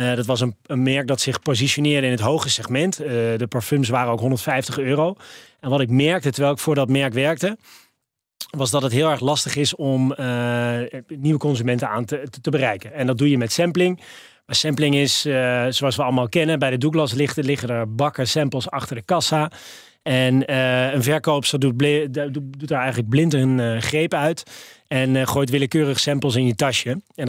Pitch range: 125-150 Hz